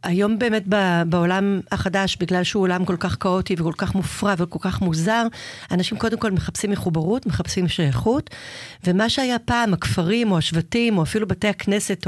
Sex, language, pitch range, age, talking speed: female, Hebrew, 175-220 Hz, 40-59, 165 wpm